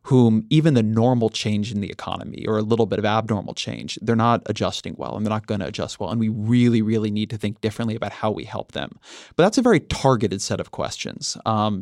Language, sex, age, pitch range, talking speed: English, male, 30-49, 105-125 Hz, 245 wpm